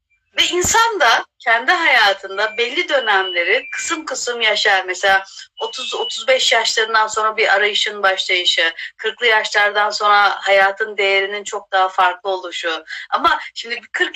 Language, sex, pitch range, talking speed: Turkish, female, 215-310 Hz, 125 wpm